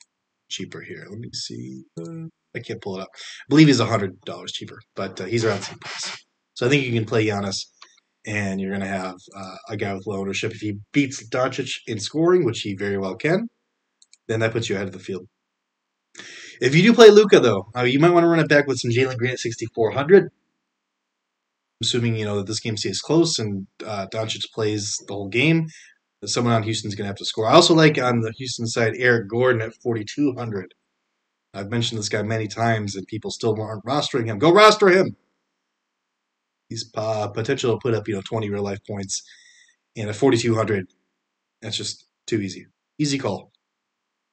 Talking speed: 200 wpm